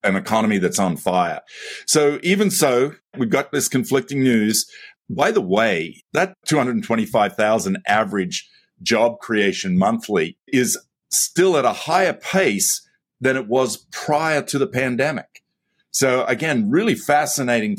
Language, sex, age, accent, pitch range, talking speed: English, male, 50-69, Australian, 115-150 Hz, 130 wpm